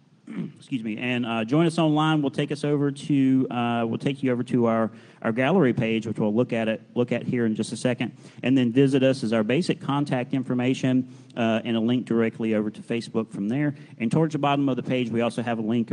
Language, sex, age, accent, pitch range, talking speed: English, male, 40-59, American, 110-140 Hz, 245 wpm